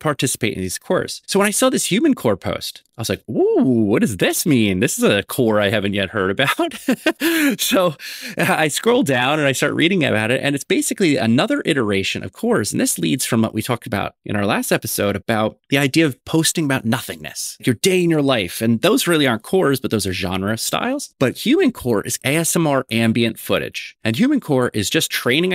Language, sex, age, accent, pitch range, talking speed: English, male, 30-49, American, 105-165 Hz, 220 wpm